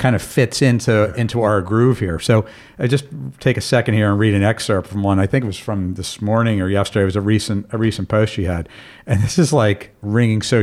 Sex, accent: male, American